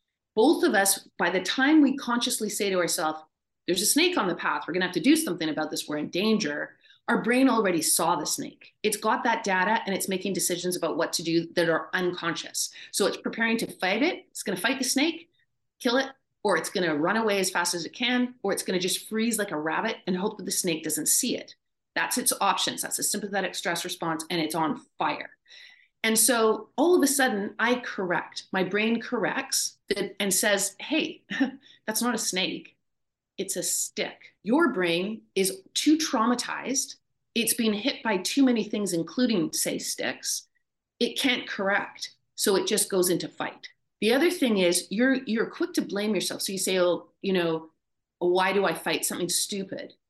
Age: 30-49